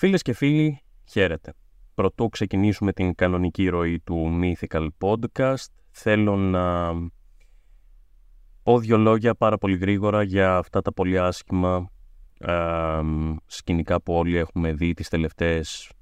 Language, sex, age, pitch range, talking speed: Greek, male, 30-49, 80-95 Hz, 125 wpm